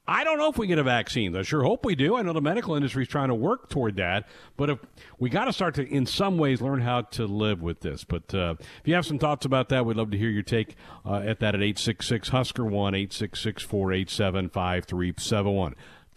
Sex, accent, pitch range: male, American, 105-145 Hz